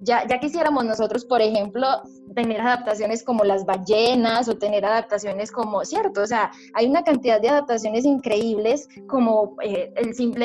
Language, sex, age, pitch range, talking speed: Spanish, female, 20-39, 210-250 Hz, 160 wpm